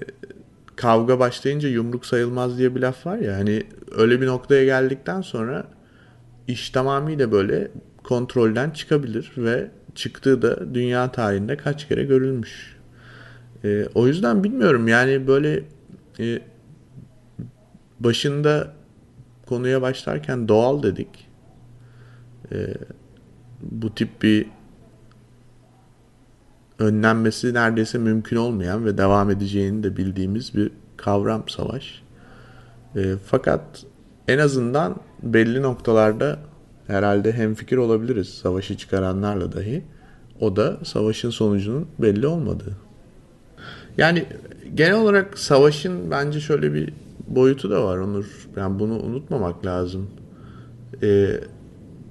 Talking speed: 105 wpm